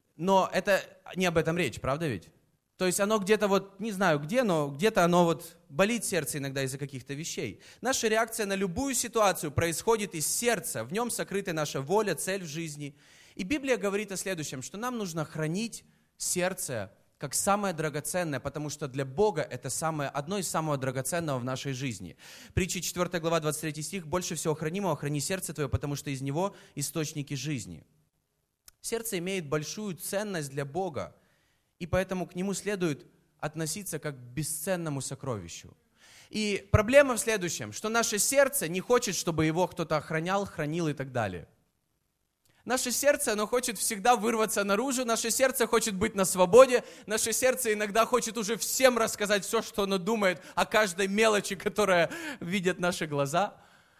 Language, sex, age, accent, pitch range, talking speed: Russian, male, 20-39, native, 155-215 Hz, 165 wpm